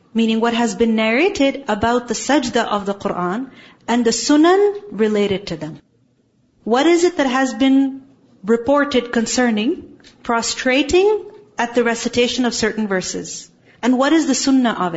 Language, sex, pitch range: English, female, 205-250 Hz